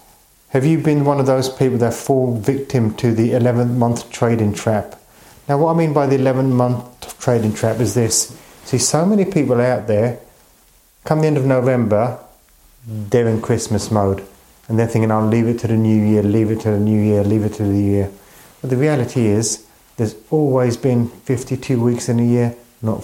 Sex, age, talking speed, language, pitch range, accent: male, 30-49, 200 wpm, English, 110-135 Hz, British